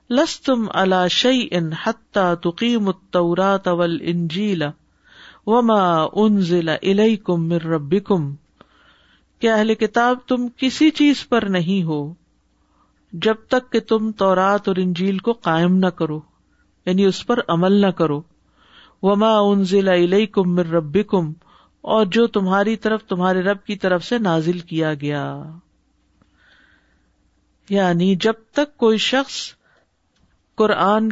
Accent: Indian